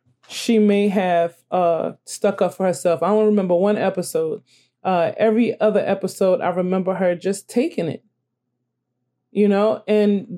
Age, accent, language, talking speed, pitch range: 20-39, American, English, 150 wpm, 190-225 Hz